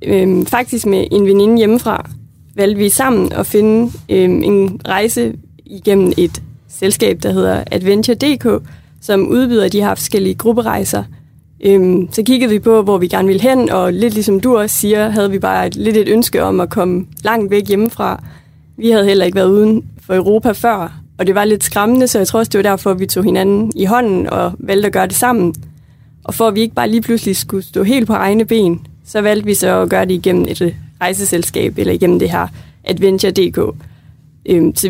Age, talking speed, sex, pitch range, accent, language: 30-49, 200 wpm, female, 185-220 Hz, native, Danish